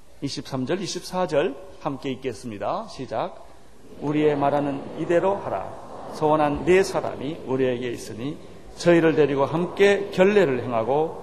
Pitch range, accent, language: 125-195 Hz, native, Korean